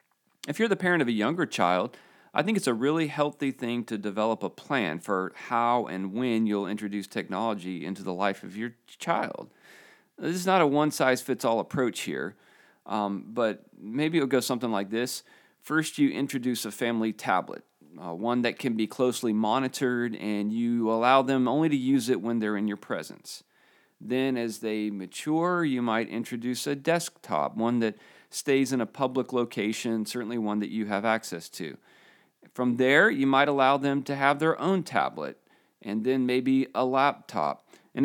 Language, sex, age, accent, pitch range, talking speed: English, male, 40-59, American, 105-135 Hz, 180 wpm